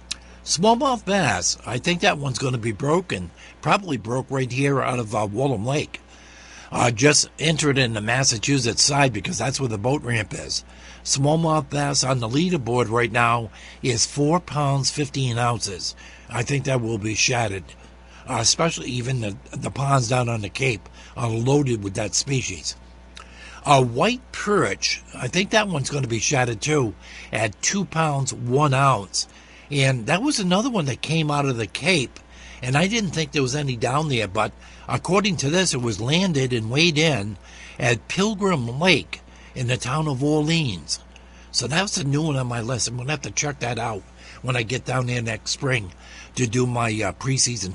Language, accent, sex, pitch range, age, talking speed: English, American, male, 105-145 Hz, 60-79, 190 wpm